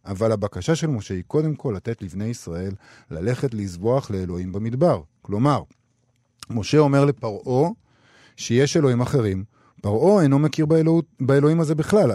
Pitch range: 110-145 Hz